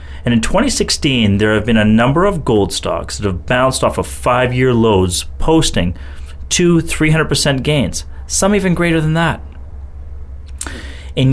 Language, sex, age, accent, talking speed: English, male, 30-49, American, 145 wpm